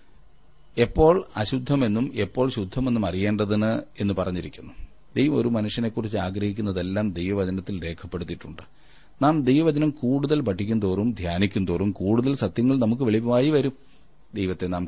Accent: native